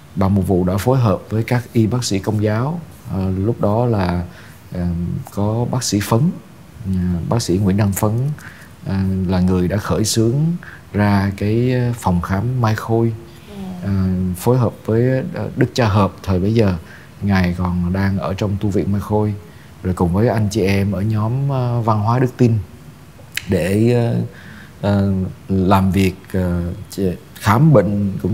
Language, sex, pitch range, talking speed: Vietnamese, male, 95-115 Hz, 155 wpm